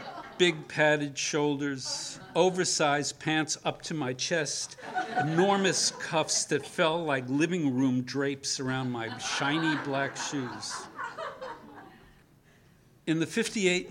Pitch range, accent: 130-155 Hz, American